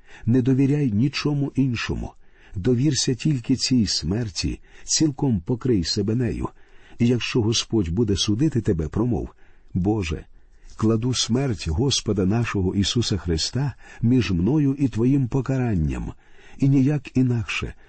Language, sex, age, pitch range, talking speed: Ukrainian, male, 50-69, 100-130 Hz, 115 wpm